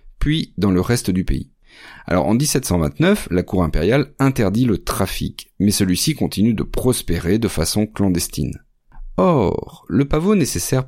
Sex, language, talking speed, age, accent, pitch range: male, French, 150 wpm, 40-59, French, 90-135 Hz